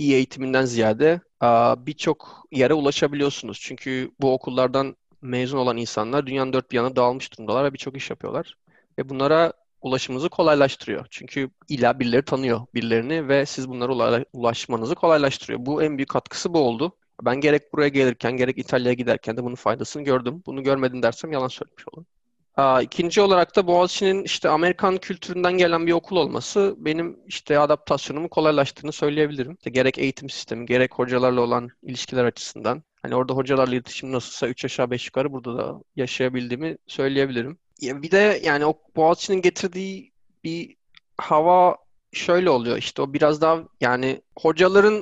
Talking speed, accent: 150 wpm, native